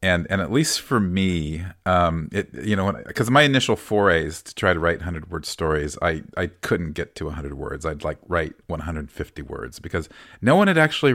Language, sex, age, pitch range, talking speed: English, male, 40-59, 80-100 Hz, 215 wpm